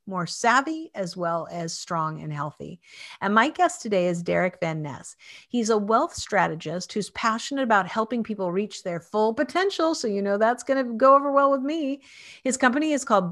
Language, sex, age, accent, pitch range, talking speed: English, female, 50-69, American, 185-270 Hz, 200 wpm